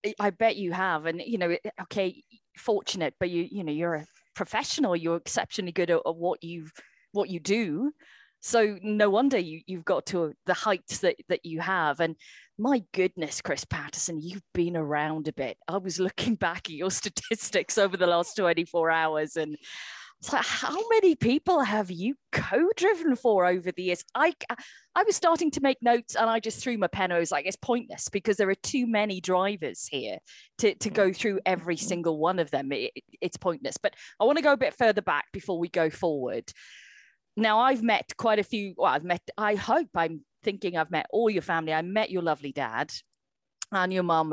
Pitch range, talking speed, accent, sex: 165-220 Hz, 205 wpm, British, female